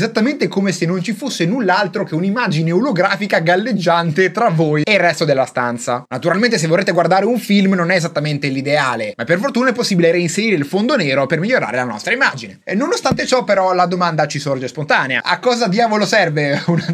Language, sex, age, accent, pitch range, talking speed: Italian, male, 30-49, native, 170-235 Hz, 200 wpm